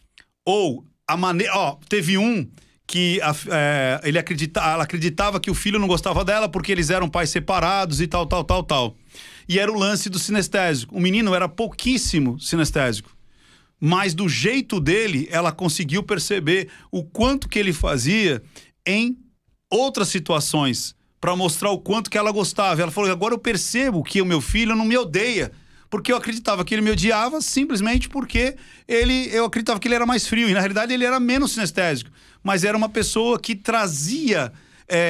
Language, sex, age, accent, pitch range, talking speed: Portuguese, male, 40-59, Brazilian, 165-215 Hz, 175 wpm